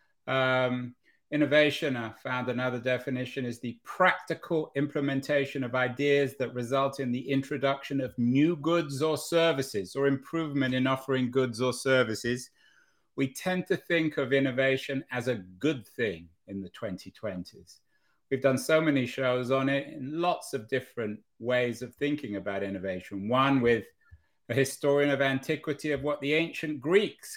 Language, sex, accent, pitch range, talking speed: English, male, British, 125-150 Hz, 150 wpm